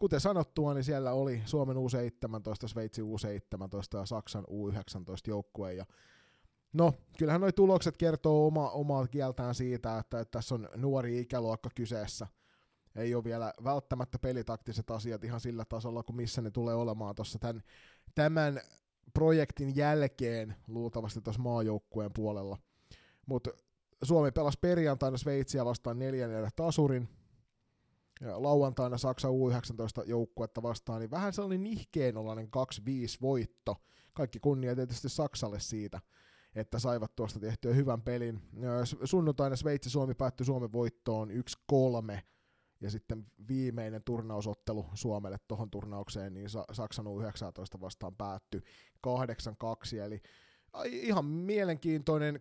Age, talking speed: 30-49, 125 wpm